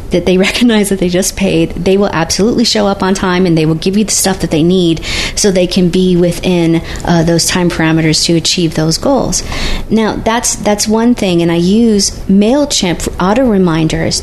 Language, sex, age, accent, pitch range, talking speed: English, female, 40-59, American, 175-215 Hz, 200 wpm